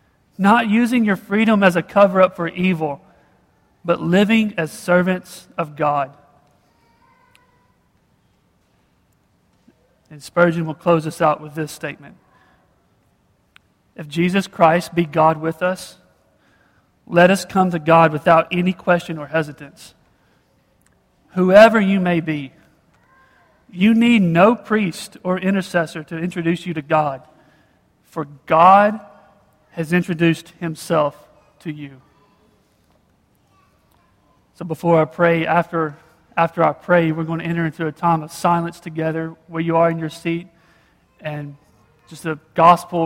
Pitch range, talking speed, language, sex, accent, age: 150-175 Hz, 130 wpm, English, male, American, 40-59